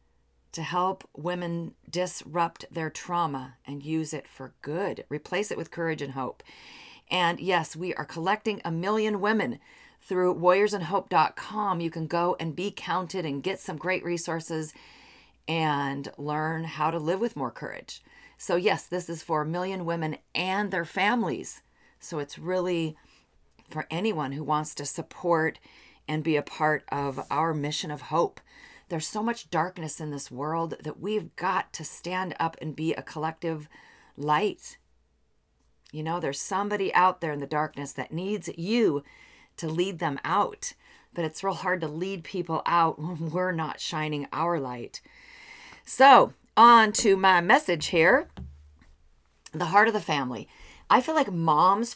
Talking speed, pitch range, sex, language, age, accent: 160 wpm, 150-185 Hz, female, English, 40-59, American